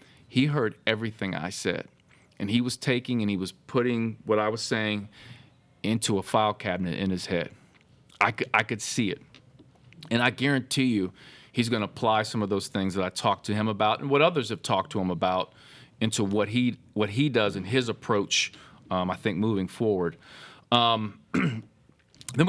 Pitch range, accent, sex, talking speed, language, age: 100-120 Hz, American, male, 190 wpm, English, 40-59